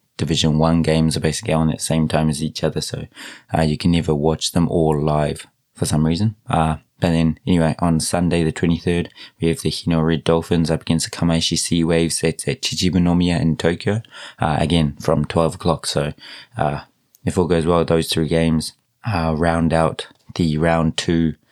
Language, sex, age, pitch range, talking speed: English, male, 20-39, 80-85 Hz, 195 wpm